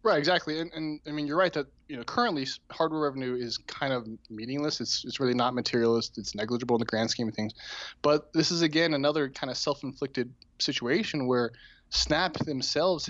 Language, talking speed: English, 195 wpm